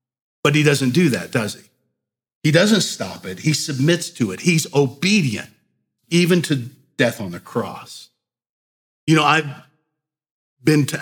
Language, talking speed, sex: English, 150 wpm, male